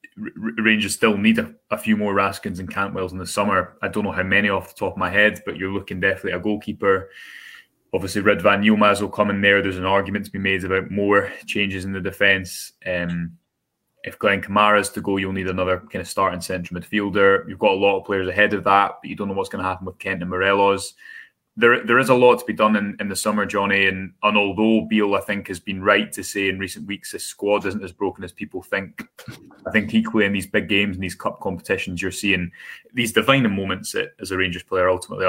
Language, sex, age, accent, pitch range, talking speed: English, male, 20-39, British, 95-105 Hz, 245 wpm